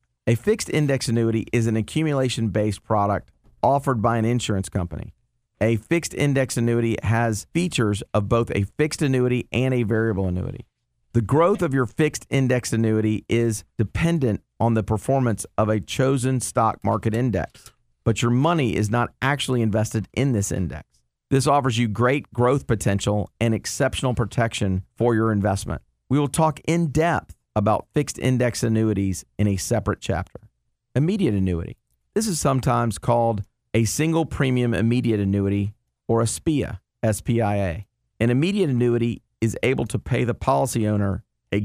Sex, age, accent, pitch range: male, 40-59, American, 105-130 Hz